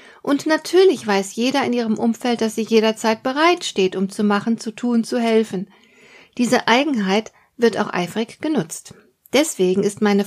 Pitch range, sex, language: 200-255 Hz, female, German